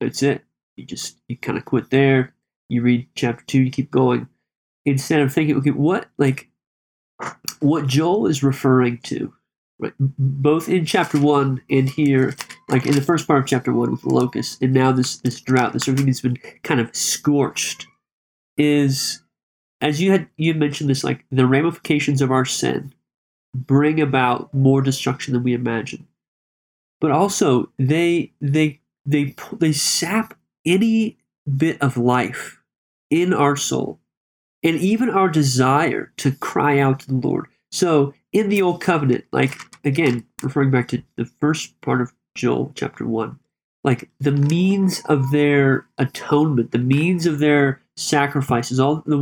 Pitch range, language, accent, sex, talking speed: 130-150 Hz, English, American, male, 160 wpm